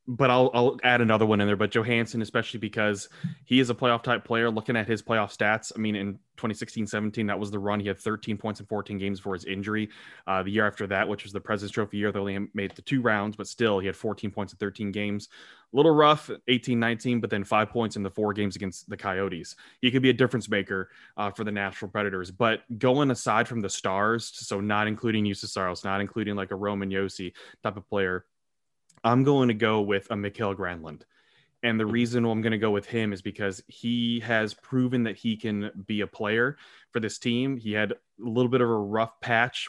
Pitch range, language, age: 100-115 Hz, English, 20-39